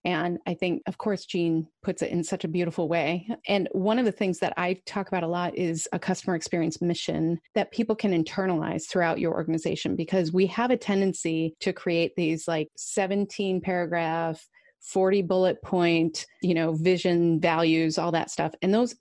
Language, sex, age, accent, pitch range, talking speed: English, female, 30-49, American, 170-205 Hz, 185 wpm